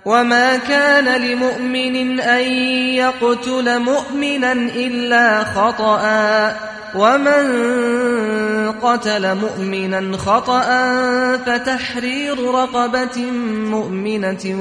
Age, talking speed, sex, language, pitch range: 30-49, 60 wpm, male, Persian, 215-250 Hz